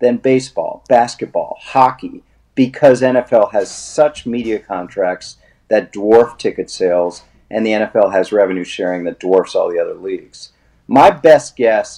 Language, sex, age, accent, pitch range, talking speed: English, male, 50-69, American, 120-155 Hz, 145 wpm